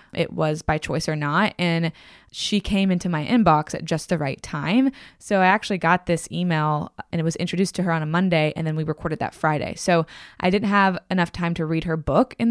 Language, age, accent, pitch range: English, 20-39, American, 160-190 Hz